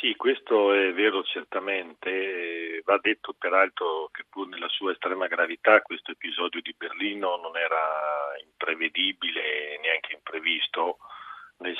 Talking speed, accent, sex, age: 120 wpm, native, male, 40-59